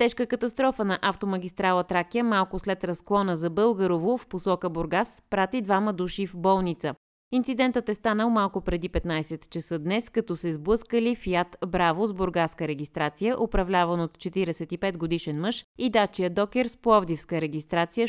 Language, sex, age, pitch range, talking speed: Bulgarian, female, 30-49, 165-215 Hz, 145 wpm